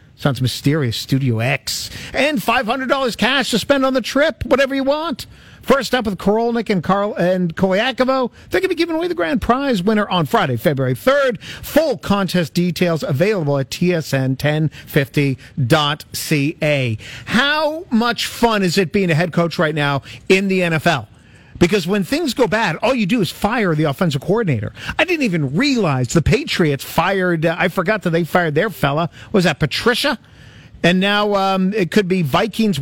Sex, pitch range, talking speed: male, 155-225 Hz, 175 wpm